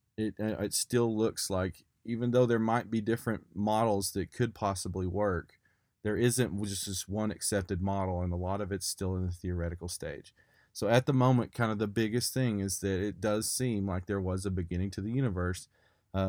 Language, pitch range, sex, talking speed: English, 95-115 Hz, male, 205 wpm